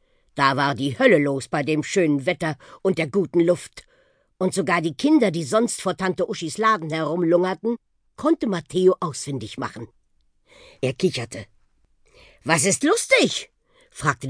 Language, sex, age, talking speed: German, female, 50-69, 145 wpm